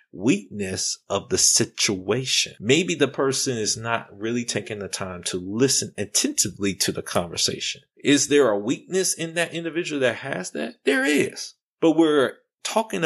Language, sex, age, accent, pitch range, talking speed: English, male, 30-49, American, 105-140 Hz, 155 wpm